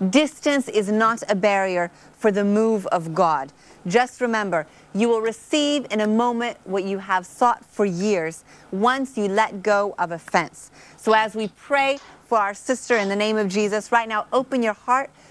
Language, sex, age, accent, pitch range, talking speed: English, female, 30-49, American, 195-250 Hz, 185 wpm